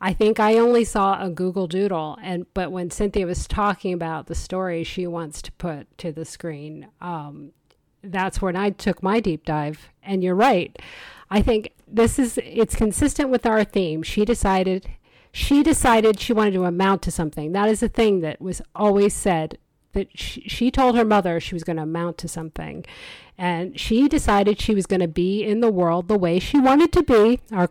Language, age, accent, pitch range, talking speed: English, 50-69, American, 175-230 Hz, 200 wpm